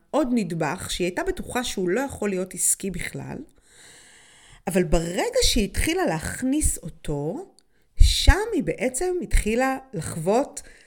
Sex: female